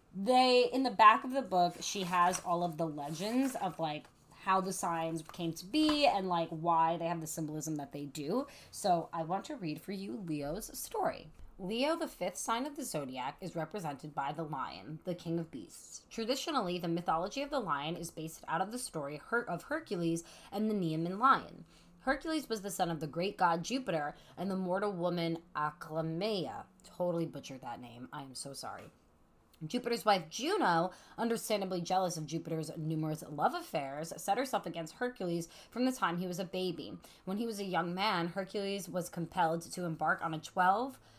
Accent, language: American, English